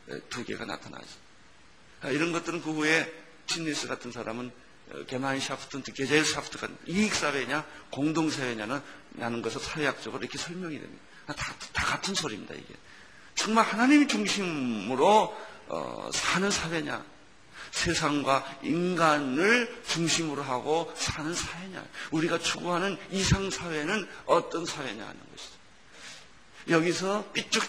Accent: native